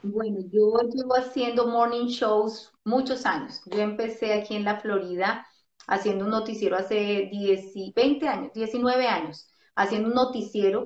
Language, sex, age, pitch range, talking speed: Spanish, female, 30-49, 190-220 Hz, 145 wpm